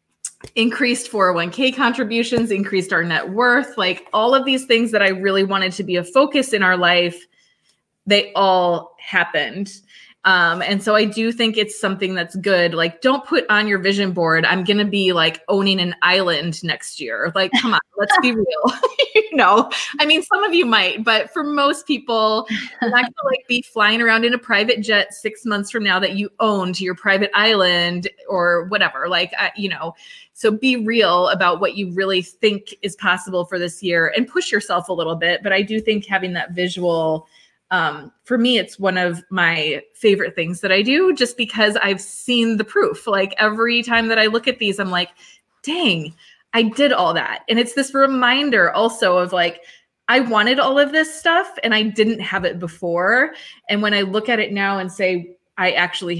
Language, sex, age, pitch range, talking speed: English, female, 20-39, 180-235 Hz, 200 wpm